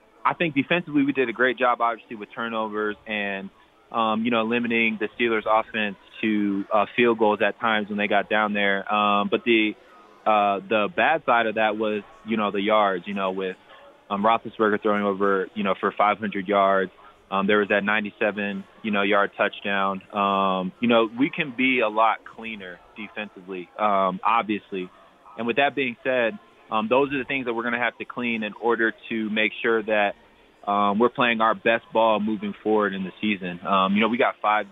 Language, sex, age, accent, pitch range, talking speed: English, male, 20-39, American, 100-115 Hz, 205 wpm